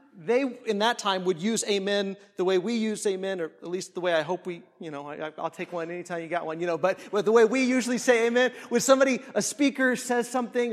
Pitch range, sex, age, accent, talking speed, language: 200-260 Hz, male, 30-49, American, 255 wpm, English